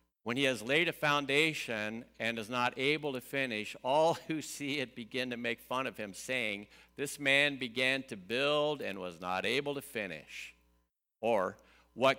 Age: 60-79